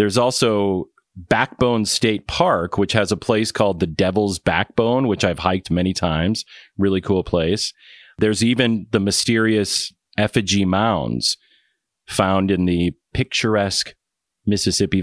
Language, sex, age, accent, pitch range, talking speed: English, male, 40-59, American, 95-115 Hz, 130 wpm